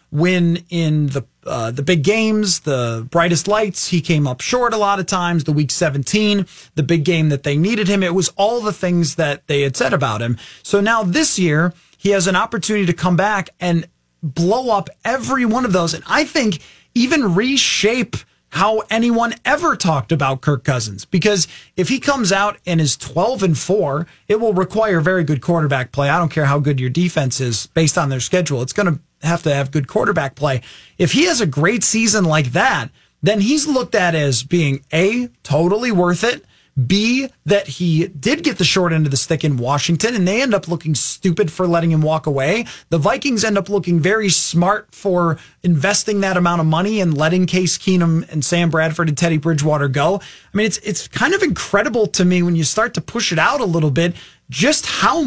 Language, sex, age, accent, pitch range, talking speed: English, male, 30-49, American, 155-205 Hz, 210 wpm